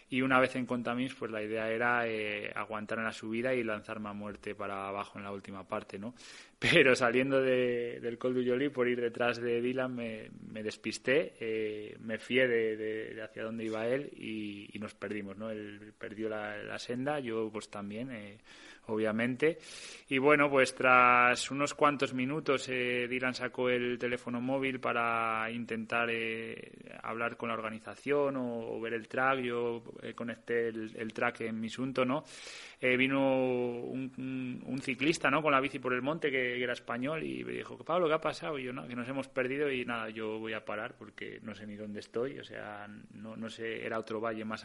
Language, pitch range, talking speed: Spanish, 110-130 Hz, 205 wpm